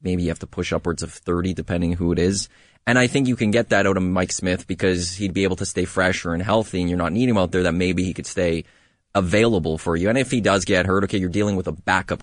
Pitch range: 85-105 Hz